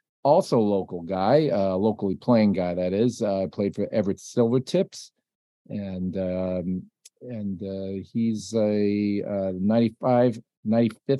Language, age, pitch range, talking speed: English, 40-59, 95-125 Hz, 120 wpm